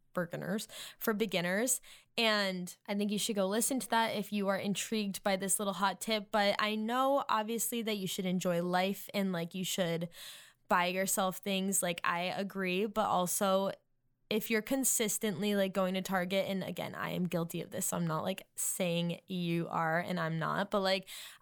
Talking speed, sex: 185 wpm, female